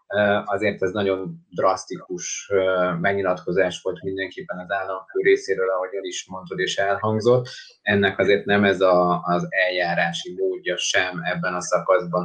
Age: 30-49